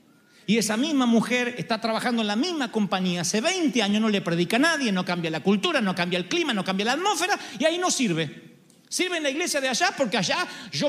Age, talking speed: 40-59, 235 wpm